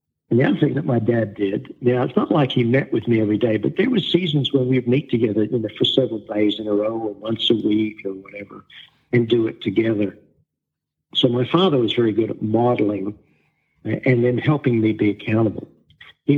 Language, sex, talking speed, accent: English, male, 210 wpm, American